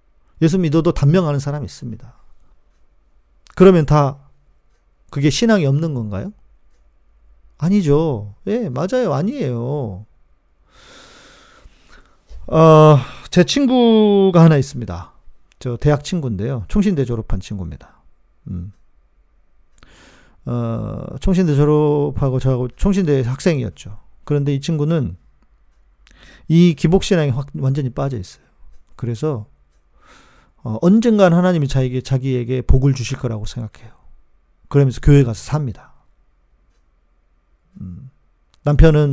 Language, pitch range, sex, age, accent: Korean, 90-150 Hz, male, 40-59, native